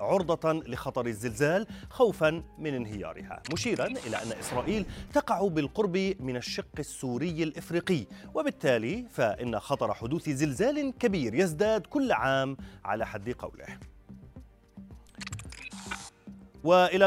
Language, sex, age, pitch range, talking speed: Arabic, male, 30-49, 120-180 Hz, 100 wpm